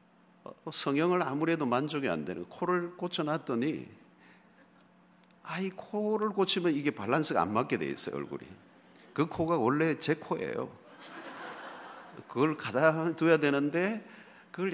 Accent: native